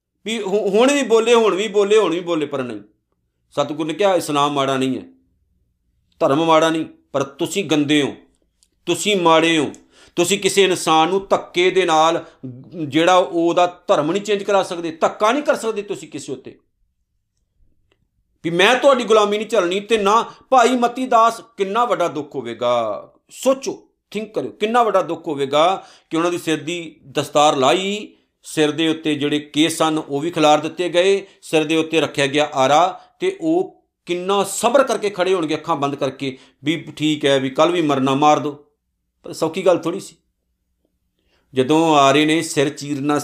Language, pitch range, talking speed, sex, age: Punjabi, 145-190 Hz, 170 wpm, male, 50-69